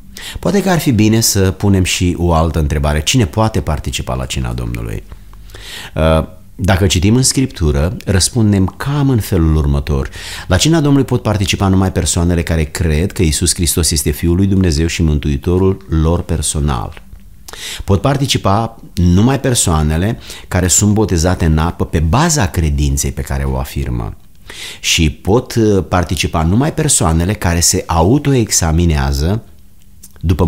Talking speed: 140 wpm